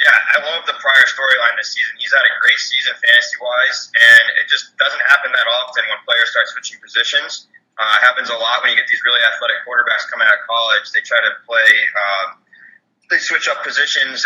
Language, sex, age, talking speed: English, male, 20-39, 215 wpm